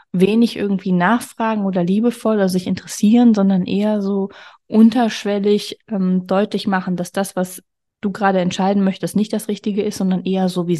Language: German